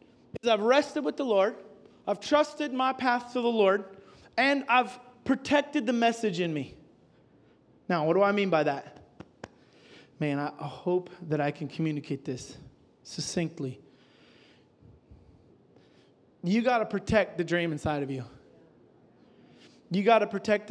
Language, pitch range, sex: English, 170-225 Hz, male